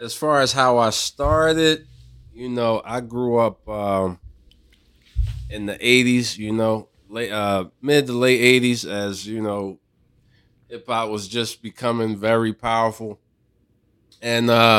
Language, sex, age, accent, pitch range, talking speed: English, male, 20-39, American, 100-125 Hz, 140 wpm